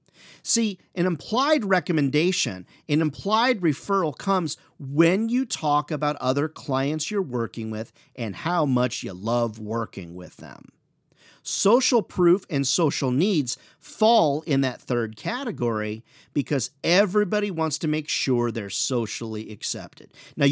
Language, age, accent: English, 40-59, American